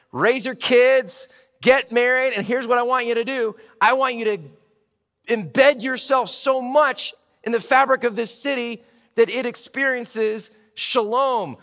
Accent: American